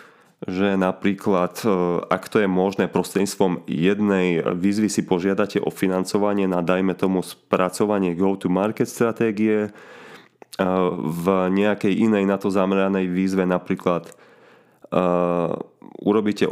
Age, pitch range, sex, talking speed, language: 30-49, 90-105 Hz, male, 105 wpm, Slovak